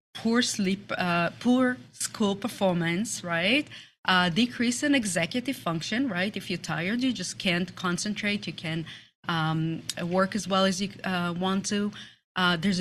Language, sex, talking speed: English, female, 155 wpm